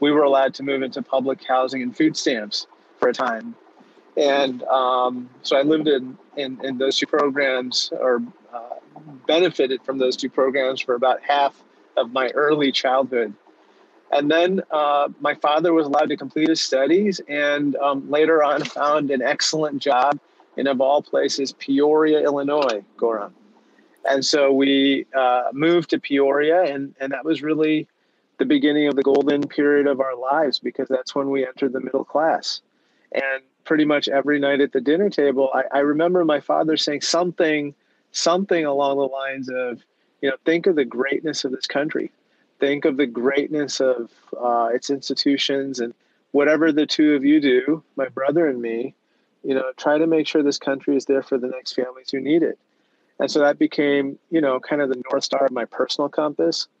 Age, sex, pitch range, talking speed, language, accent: 30-49, male, 135-150 Hz, 185 wpm, English, American